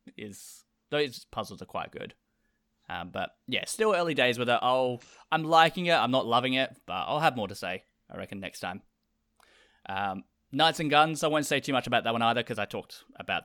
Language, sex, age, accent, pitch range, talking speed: English, male, 20-39, Australian, 105-130 Hz, 220 wpm